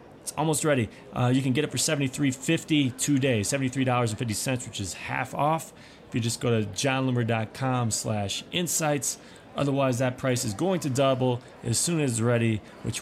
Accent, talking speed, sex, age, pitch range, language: American, 175 wpm, male, 30-49, 110-140 Hz, English